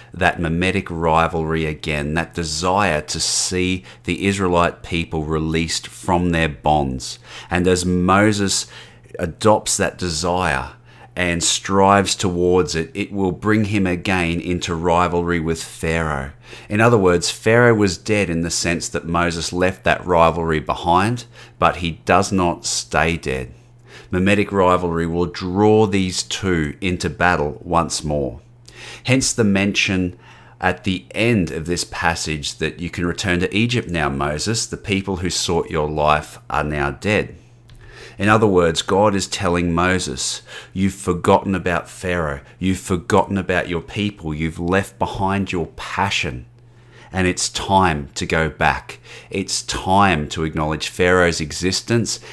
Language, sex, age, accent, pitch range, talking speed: English, male, 30-49, Australian, 80-95 Hz, 140 wpm